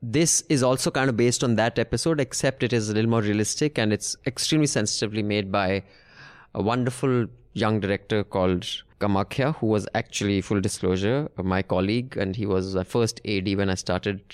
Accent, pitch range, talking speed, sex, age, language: Indian, 105-135 Hz, 190 wpm, male, 20-39, English